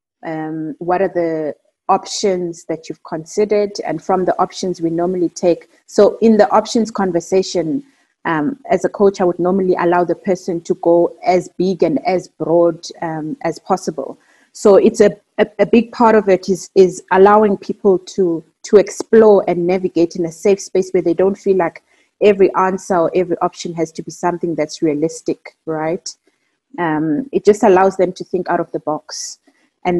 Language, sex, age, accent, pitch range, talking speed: English, female, 30-49, South African, 170-210 Hz, 180 wpm